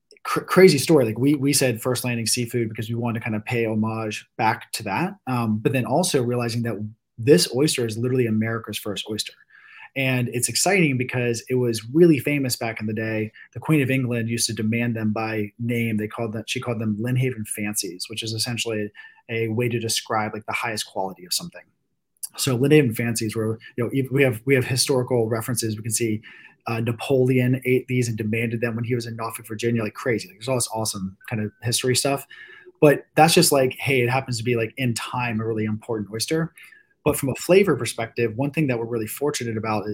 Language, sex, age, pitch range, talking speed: English, male, 20-39, 110-130 Hz, 215 wpm